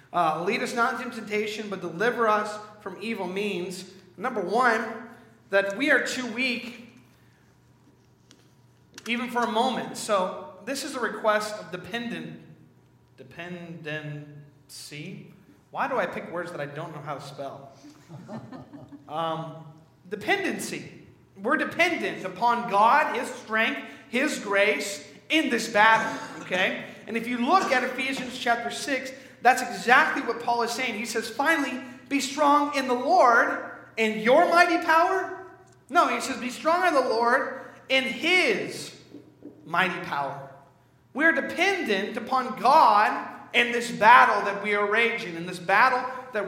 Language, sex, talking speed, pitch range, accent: English, male, 140 wpm, 185-255 Hz, American